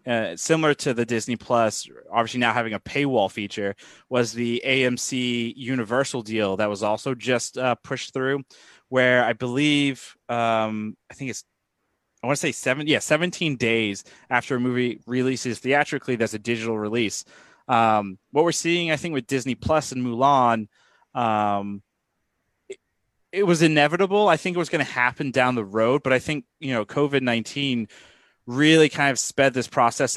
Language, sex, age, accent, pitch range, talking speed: English, male, 20-39, American, 115-145 Hz, 175 wpm